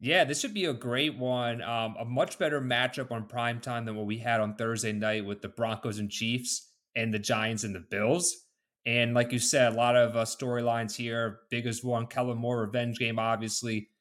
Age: 30-49